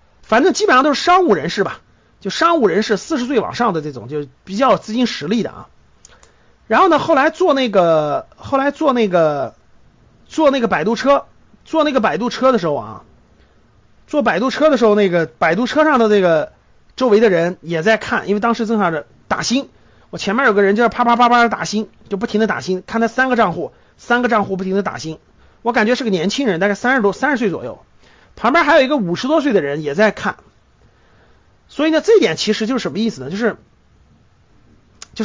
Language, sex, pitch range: Chinese, male, 200-295 Hz